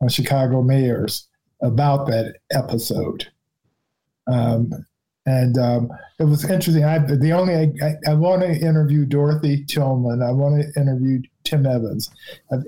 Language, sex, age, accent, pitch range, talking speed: English, male, 50-69, American, 130-155 Hz, 130 wpm